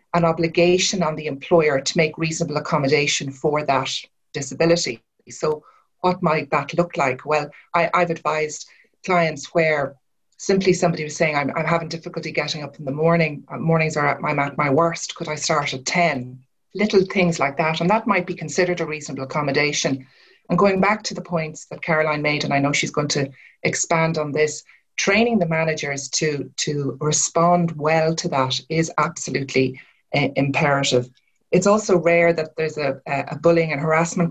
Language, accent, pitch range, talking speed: English, Irish, 150-170 Hz, 175 wpm